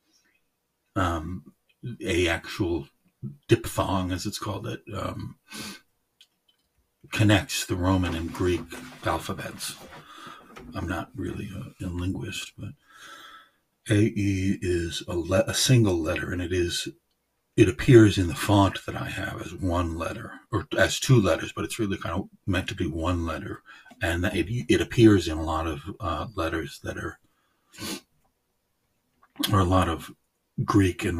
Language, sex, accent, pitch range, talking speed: English, male, American, 85-105 Hz, 145 wpm